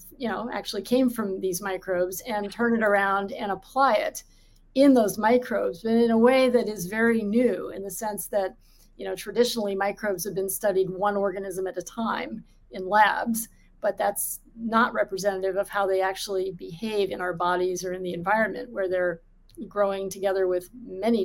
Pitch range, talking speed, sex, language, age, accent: 190-225 Hz, 185 wpm, female, English, 30-49, American